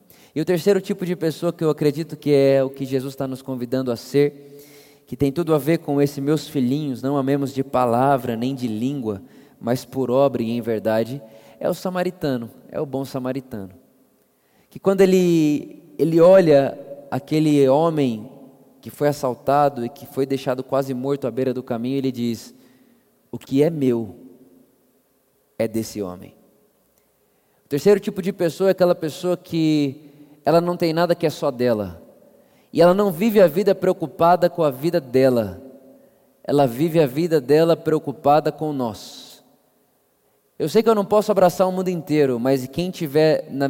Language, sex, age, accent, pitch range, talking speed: Portuguese, male, 20-39, Brazilian, 135-170 Hz, 175 wpm